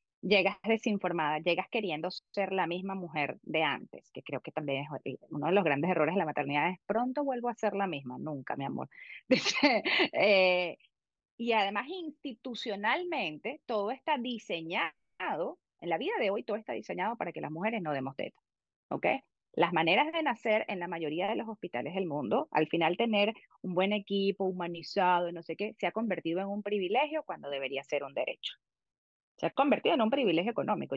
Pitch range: 165-225 Hz